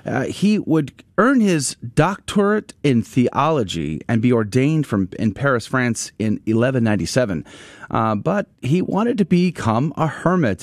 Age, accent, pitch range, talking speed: 30-49, American, 115-170 Hz, 150 wpm